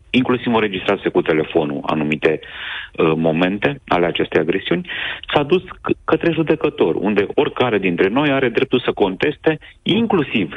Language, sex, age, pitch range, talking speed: Romanian, male, 40-59, 95-155 Hz, 135 wpm